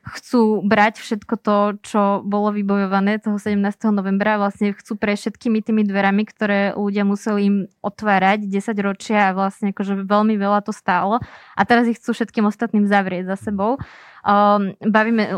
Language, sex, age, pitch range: Slovak, female, 20-39, 200-220 Hz